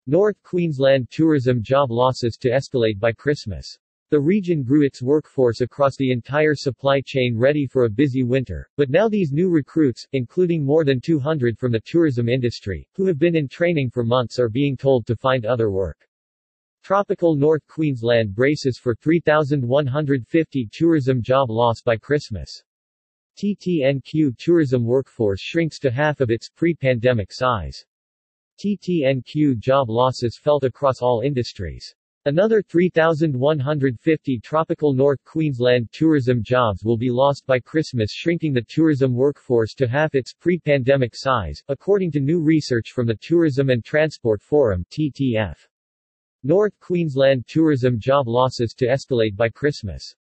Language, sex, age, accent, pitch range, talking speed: English, male, 50-69, American, 120-155 Hz, 145 wpm